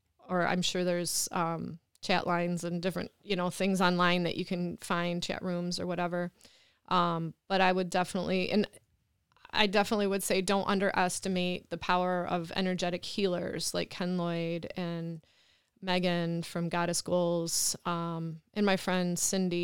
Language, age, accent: English, 20-39, American